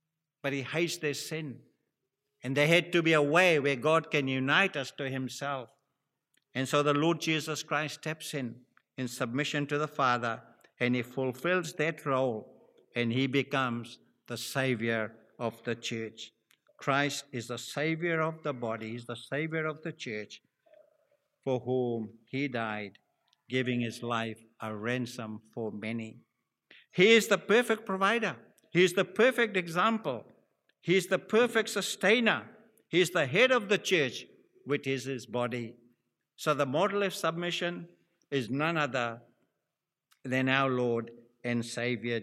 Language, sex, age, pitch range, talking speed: English, male, 60-79, 125-170 Hz, 150 wpm